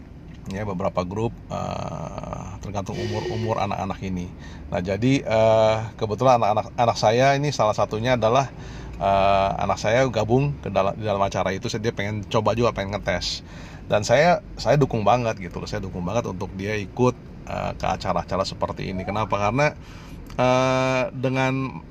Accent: native